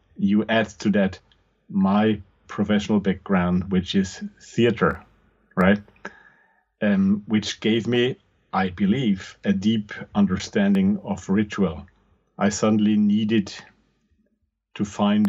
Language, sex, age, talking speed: English, male, 40-59, 105 wpm